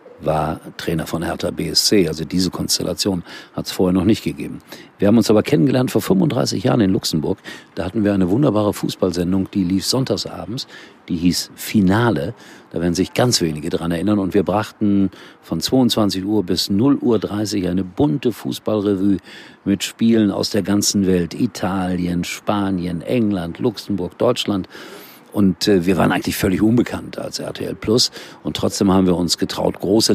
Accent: German